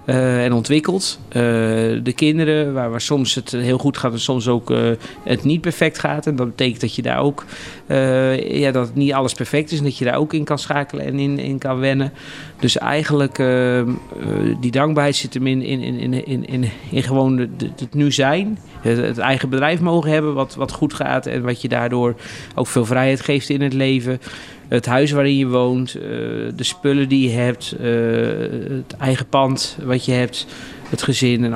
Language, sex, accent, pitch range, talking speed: Dutch, male, Dutch, 120-140 Hz, 200 wpm